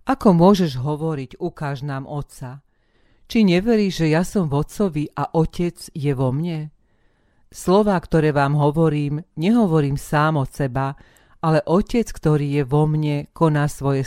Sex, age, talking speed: female, 40-59, 145 wpm